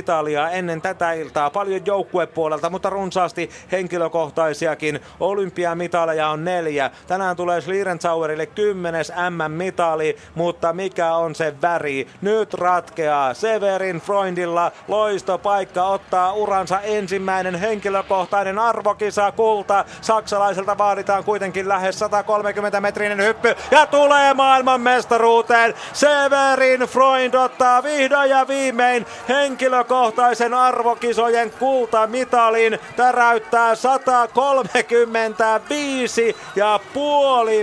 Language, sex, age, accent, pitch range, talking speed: Finnish, male, 30-49, native, 190-235 Hz, 90 wpm